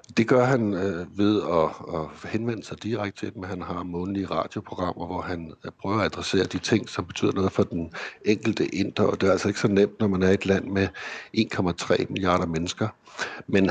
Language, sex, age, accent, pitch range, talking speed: Danish, male, 60-79, native, 85-105 Hz, 205 wpm